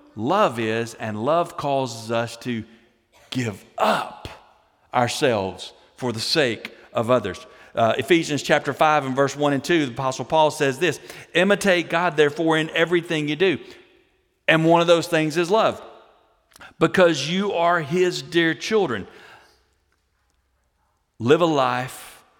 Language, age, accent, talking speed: English, 50-69, American, 140 wpm